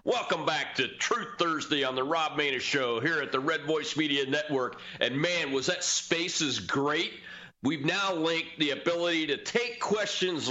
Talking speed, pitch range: 175 wpm, 145-180 Hz